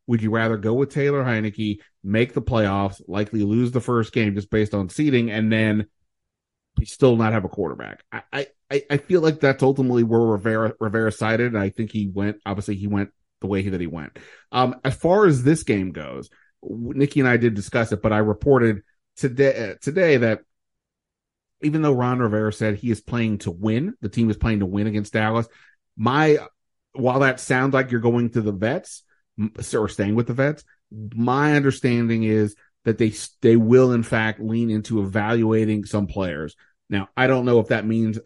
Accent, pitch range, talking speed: American, 105-120 Hz, 195 wpm